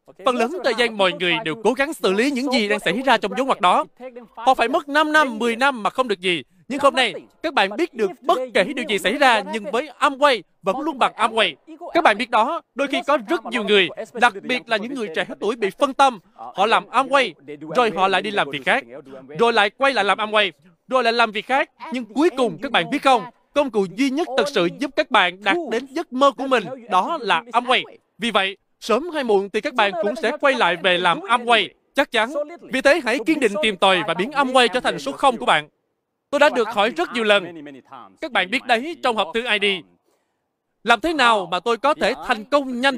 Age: 20-39